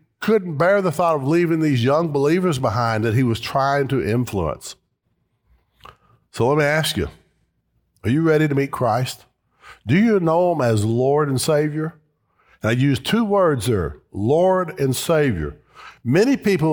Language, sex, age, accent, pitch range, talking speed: English, male, 50-69, American, 120-165 Hz, 165 wpm